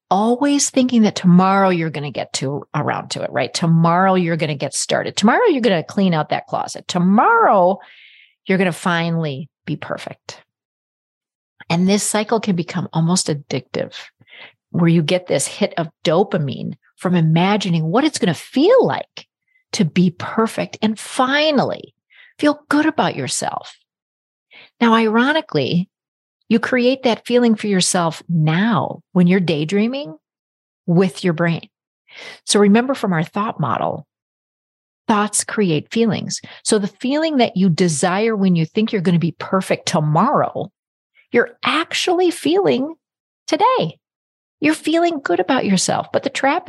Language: English